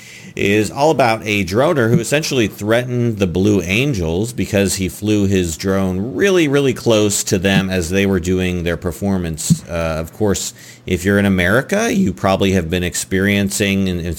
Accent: American